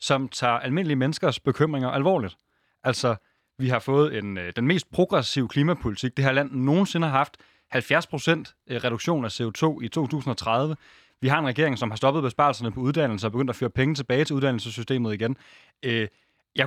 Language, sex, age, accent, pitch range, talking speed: Danish, male, 30-49, native, 120-155 Hz, 170 wpm